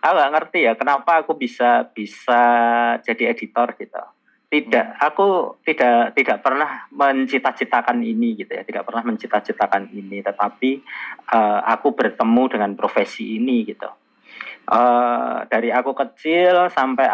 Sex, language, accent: male, Indonesian, native